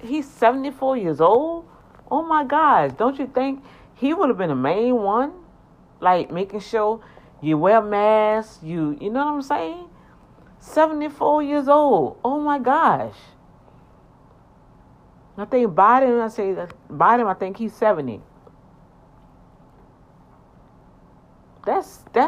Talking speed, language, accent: 125 wpm, English, American